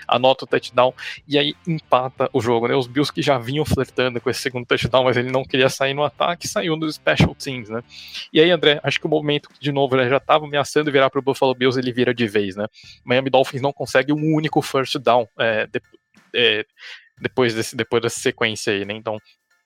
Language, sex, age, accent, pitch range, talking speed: Portuguese, male, 20-39, Brazilian, 115-145 Hz, 225 wpm